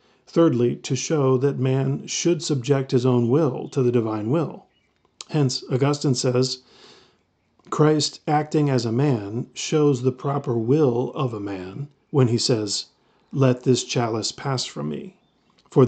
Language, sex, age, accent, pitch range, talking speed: English, male, 40-59, American, 120-140 Hz, 145 wpm